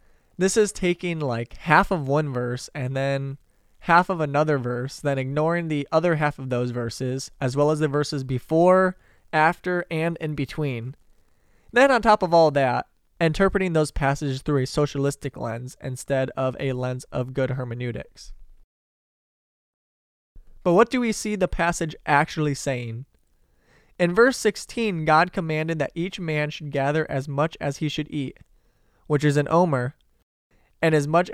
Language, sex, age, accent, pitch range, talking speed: English, male, 20-39, American, 135-170 Hz, 160 wpm